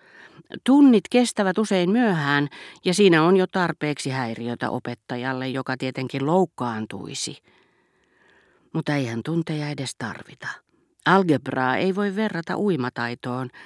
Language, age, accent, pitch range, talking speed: Finnish, 40-59, native, 120-175 Hz, 105 wpm